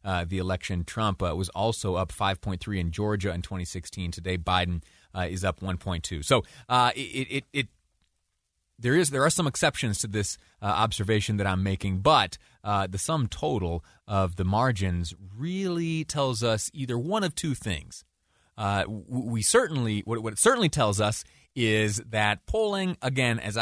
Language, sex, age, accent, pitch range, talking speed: English, male, 30-49, American, 90-125 Hz, 185 wpm